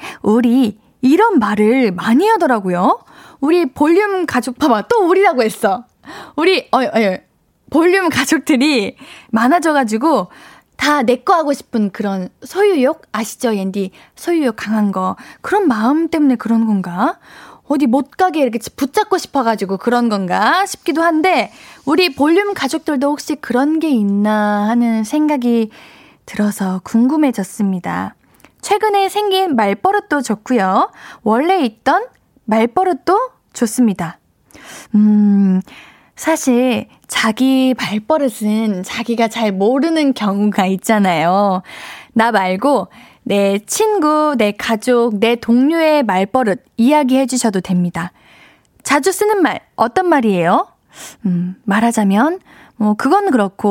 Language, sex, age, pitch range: Korean, female, 20-39, 210-315 Hz